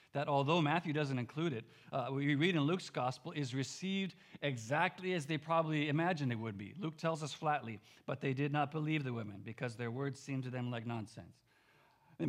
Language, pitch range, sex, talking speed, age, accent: English, 115-145 Hz, male, 205 wpm, 50-69, American